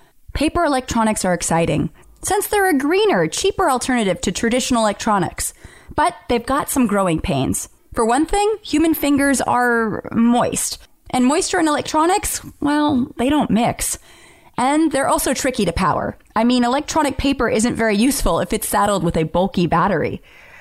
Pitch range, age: 205-300 Hz, 30-49